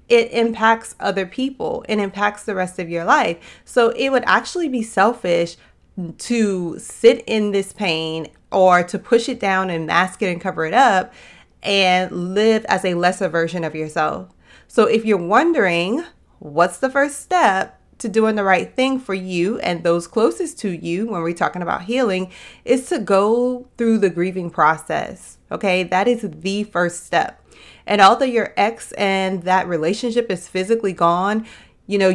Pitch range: 180-225 Hz